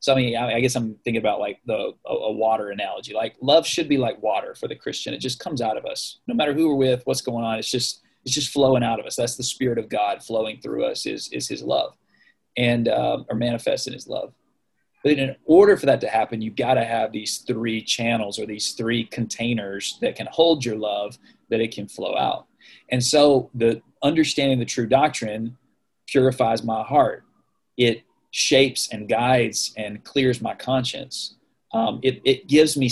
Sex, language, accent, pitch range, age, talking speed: male, English, American, 115-135 Hz, 20-39, 210 wpm